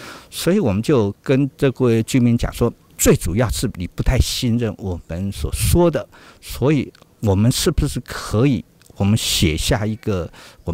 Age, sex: 50-69, male